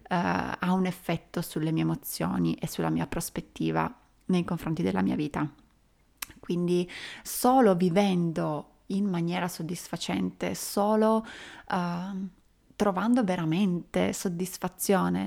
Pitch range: 170-195 Hz